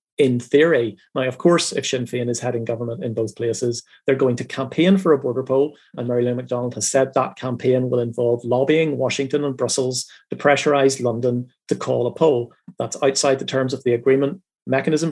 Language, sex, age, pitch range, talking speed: English, male, 40-59, 130-165 Hz, 205 wpm